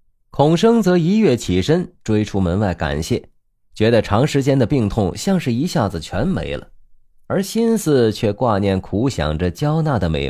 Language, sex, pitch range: Chinese, male, 95-150 Hz